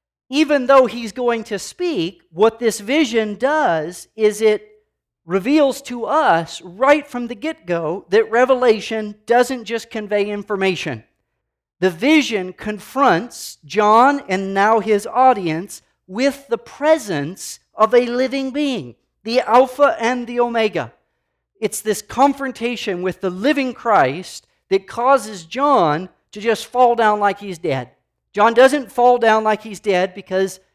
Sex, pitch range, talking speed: male, 185-240 Hz, 135 wpm